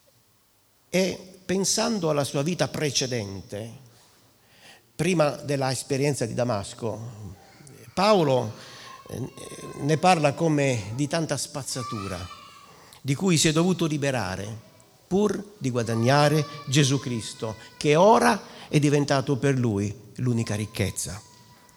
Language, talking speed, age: Italian, 100 wpm, 50-69